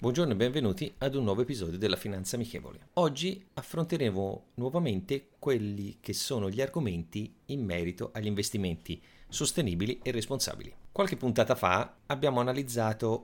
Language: Italian